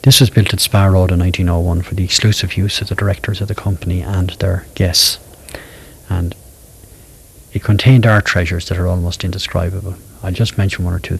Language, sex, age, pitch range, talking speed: English, male, 60-79, 90-105 Hz, 195 wpm